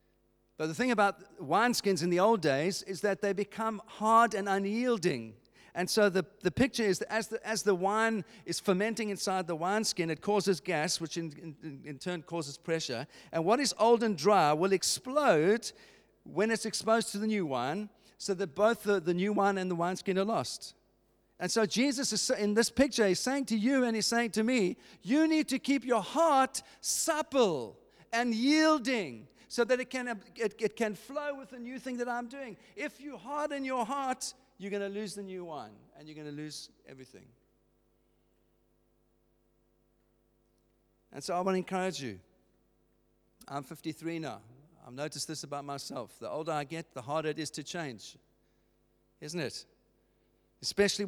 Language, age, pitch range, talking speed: English, 50-69, 150-225 Hz, 185 wpm